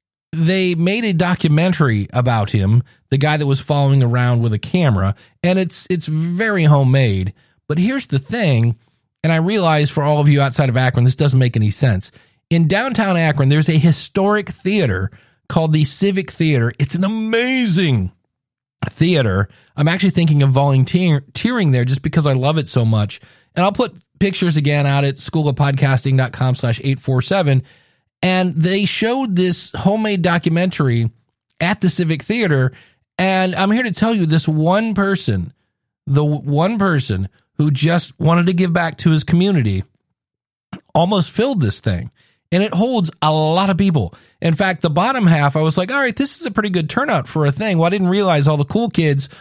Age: 40-59